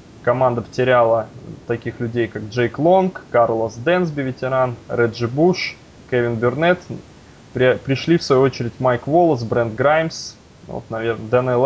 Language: Russian